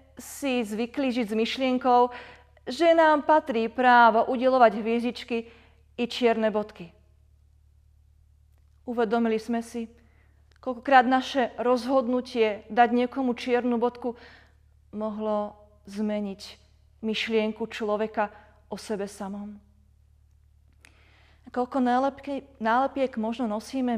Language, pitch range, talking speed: Slovak, 180-240 Hz, 90 wpm